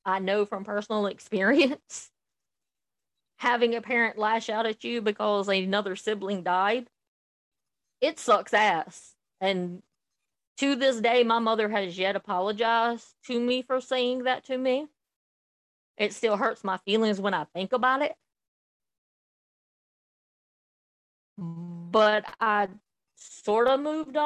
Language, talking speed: English, 125 wpm